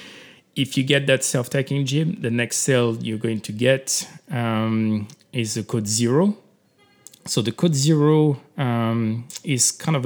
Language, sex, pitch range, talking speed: English, male, 110-140 Hz, 155 wpm